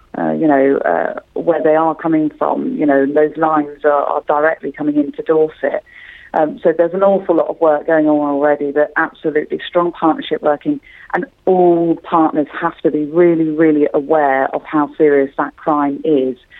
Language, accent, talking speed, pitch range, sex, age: English, British, 180 wpm, 145-170 Hz, female, 40-59